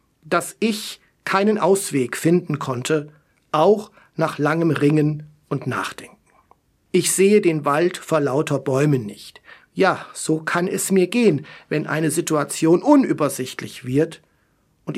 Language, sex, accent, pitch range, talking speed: German, male, German, 155-205 Hz, 130 wpm